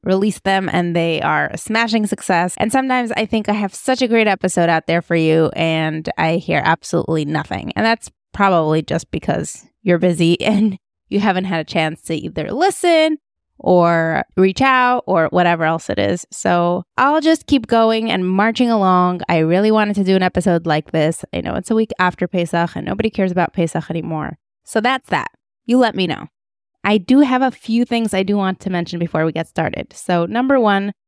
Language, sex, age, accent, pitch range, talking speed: English, female, 20-39, American, 175-230 Hz, 205 wpm